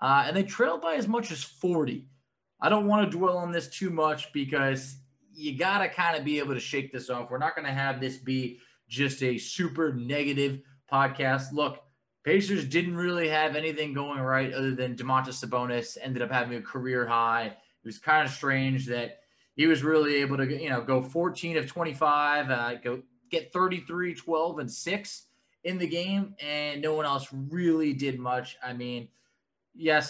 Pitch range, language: 130-165 Hz, English